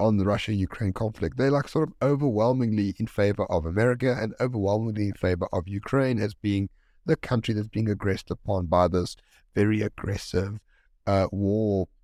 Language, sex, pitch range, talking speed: English, male, 95-125 Hz, 165 wpm